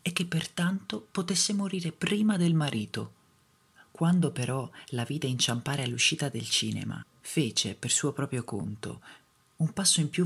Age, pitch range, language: 40-59, 125-165 Hz, Italian